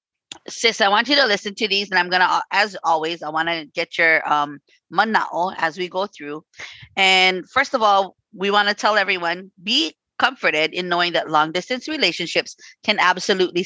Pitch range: 175-230 Hz